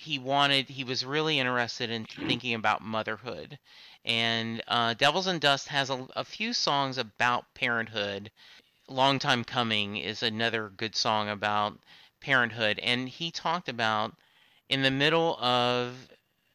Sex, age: male, 30-49